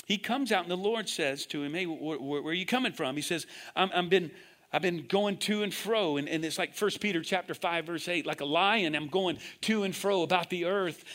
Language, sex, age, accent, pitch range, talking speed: English, male, 50-69, American, 165-225 Hz, 265 wpm